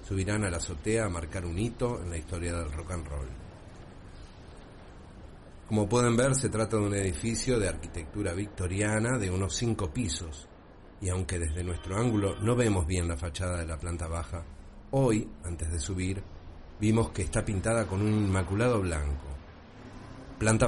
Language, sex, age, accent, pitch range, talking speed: Spanish, male, 40-59, Argentinian, 85-110 Hz, 165 wpm